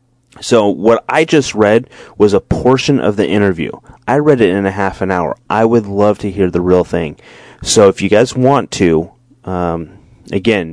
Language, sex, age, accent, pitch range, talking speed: English, male, 30-49, American, 95-120 Hz, 195 wpm